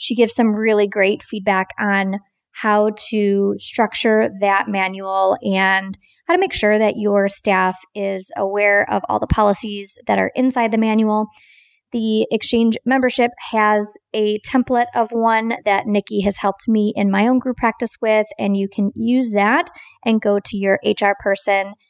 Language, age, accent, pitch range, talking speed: English, 20-39, American, 200-235 Hz, 165 wpm